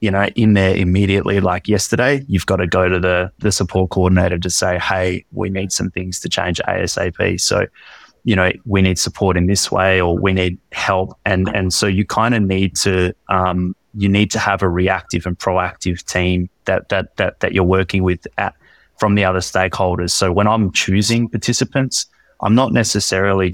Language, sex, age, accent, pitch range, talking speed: English, male, 20-39, Australian, 90-105 Hz, 195 wpm